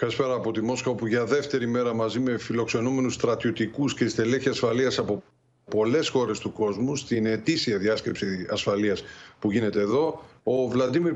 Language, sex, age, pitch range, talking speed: Greek, male, 50-69, 115-155 Hz, 155 wpm